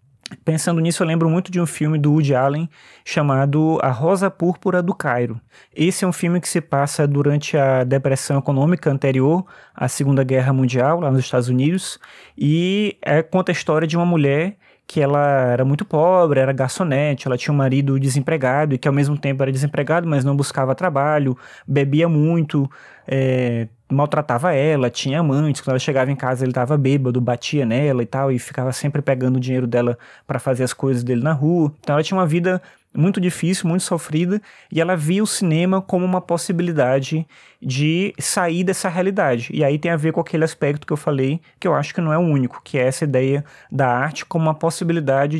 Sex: male